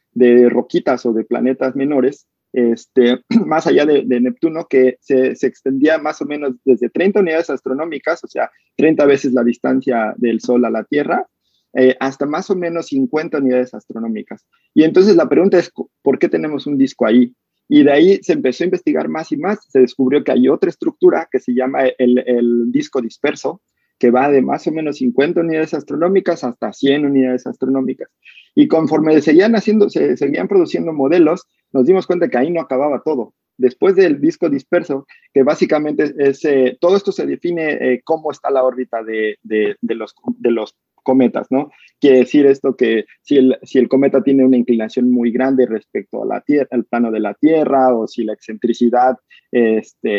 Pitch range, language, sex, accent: 125-160 Hz, Spanish, male, Mexican